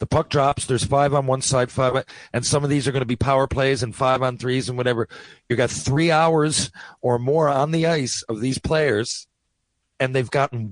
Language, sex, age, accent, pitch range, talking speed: English, male, 40-59, American, 120-140 Hz, 225 wpm